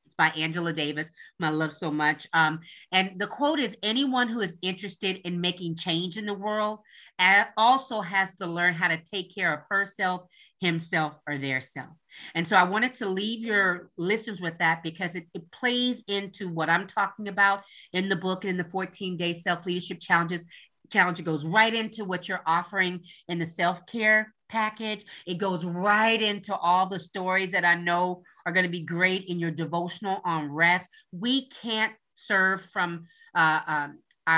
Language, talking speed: English, 180 wpm